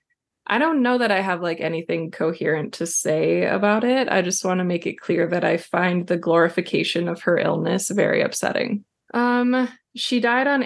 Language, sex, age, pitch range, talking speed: English, female, 20-39, 175-215 Hz, 190 wpm